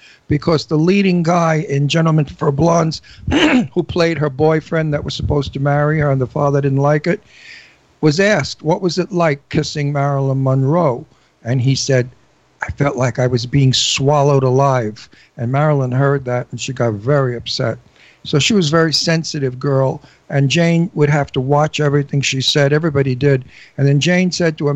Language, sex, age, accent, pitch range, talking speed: English, male, 60-79, American, 135-160 Hz, 185 wpm